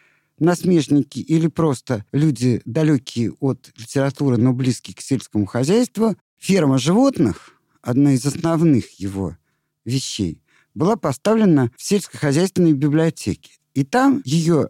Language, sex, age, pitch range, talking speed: Russian, male, 50-69, 130-190 Hz, 110 wpm